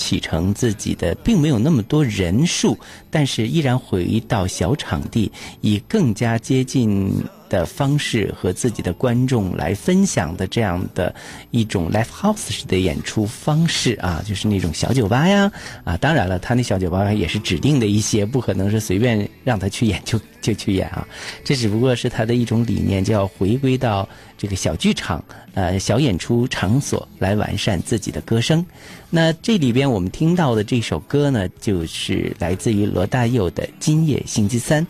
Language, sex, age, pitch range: Chinese, male, 50-69, 100-130 Hz